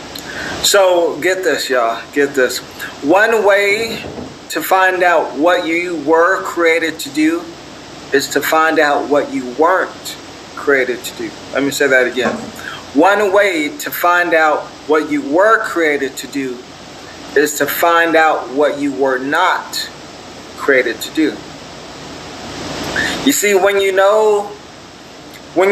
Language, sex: English, male